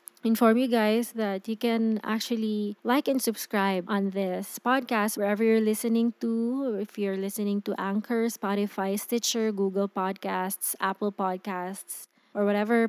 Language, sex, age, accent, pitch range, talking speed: English, female, 20-39, Filipino, 200-235 Hz, 145 wpm